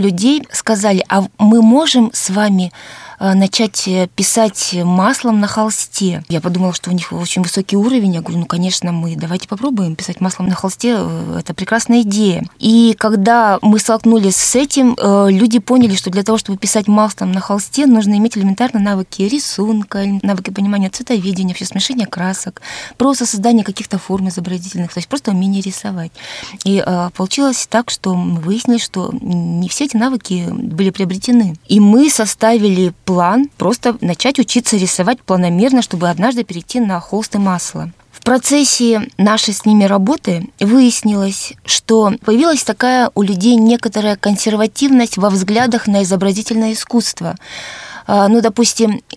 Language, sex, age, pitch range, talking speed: Russian, female, 20-39, 185-230 Hz, 145 wpm